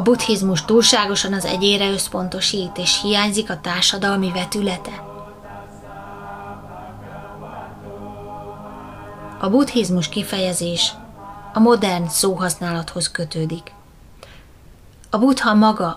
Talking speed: 80 wpm